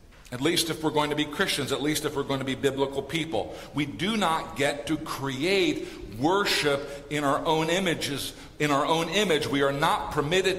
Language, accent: English, American